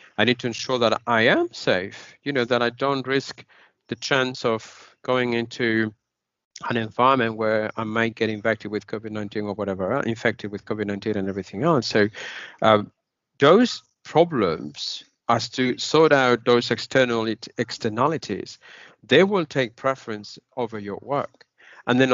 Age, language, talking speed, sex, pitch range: 50-69, Finnish, 150 wpm, male, 115-145 Hz